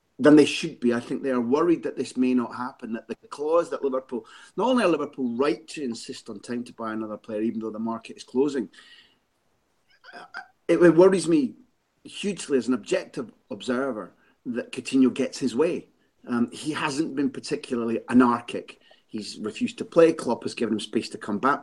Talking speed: 190 wpm